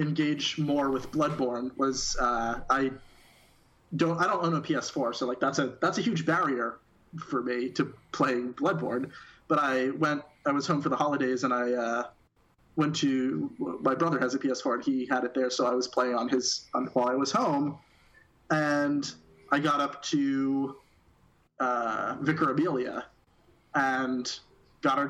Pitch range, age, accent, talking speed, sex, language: 125-150 Hz, 20-39, American, 170 wpm, male, English